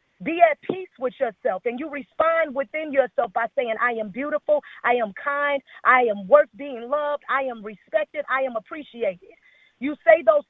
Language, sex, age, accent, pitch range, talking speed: English, female, 40-59, American, 250-300 Hz, 185 wpm